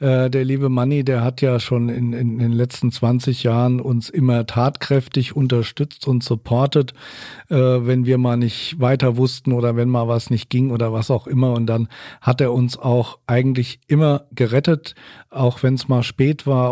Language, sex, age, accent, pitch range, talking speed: German, male, 40-59, German, 120-135 Hz, 180 wpm